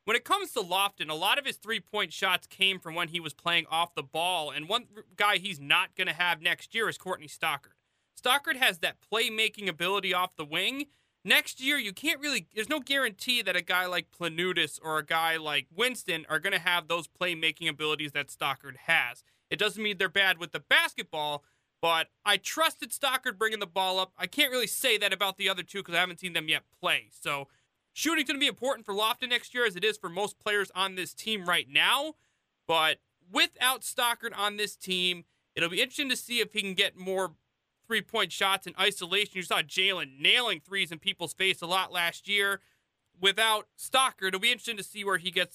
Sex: male